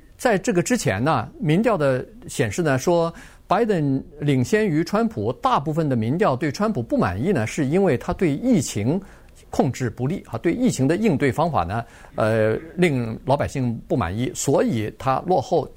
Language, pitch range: Chinese, 115-170 Hz